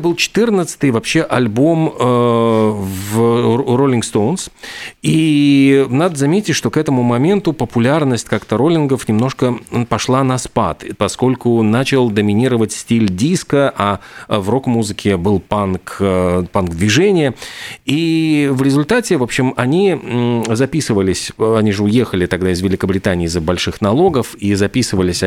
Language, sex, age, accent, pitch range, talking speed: Russian, male, 40-59, native, 100-135 Hz, 120 wpm